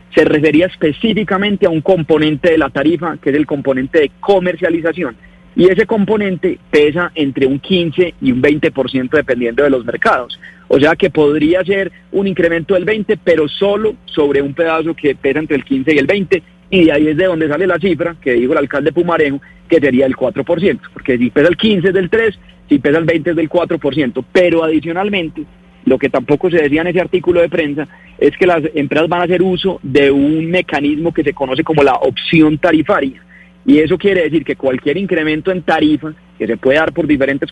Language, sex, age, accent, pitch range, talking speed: Spanish, male, 30-49, Colombian, 145-180 Hz, 205 wpm